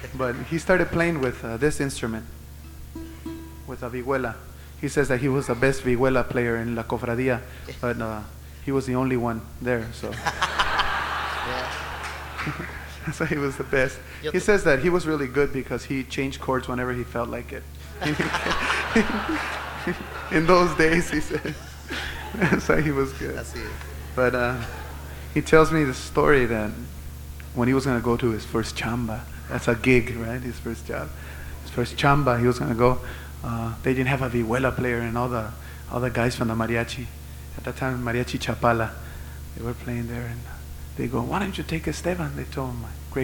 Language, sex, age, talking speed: English, male, 20-39, 180 wpm